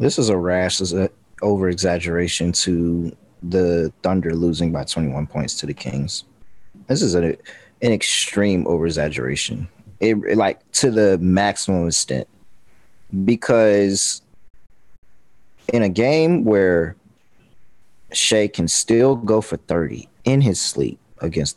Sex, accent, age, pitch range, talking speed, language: male, American, 20-39, 90-115 Hz, 115 wpm, English